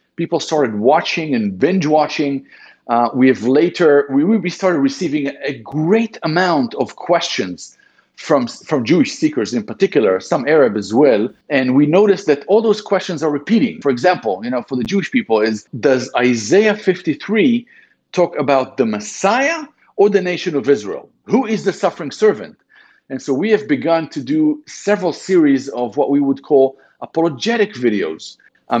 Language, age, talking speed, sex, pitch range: English, 50-69, 165 wpm, male, 135-210 Hz